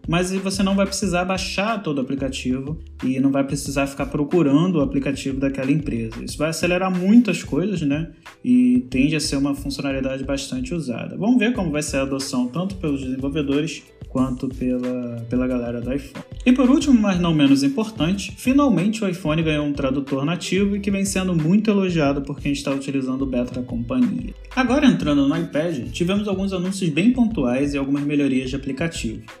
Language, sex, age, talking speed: Portuguese, male, 20-39, 185 wpm